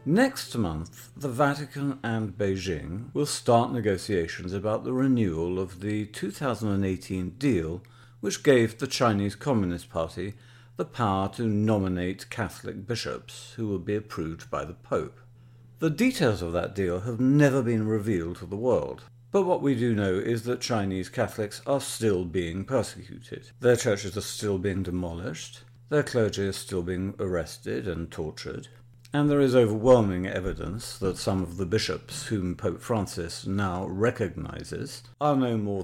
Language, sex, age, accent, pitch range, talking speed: English, male, 50-69, British, 95-125 Hz, 155 wpm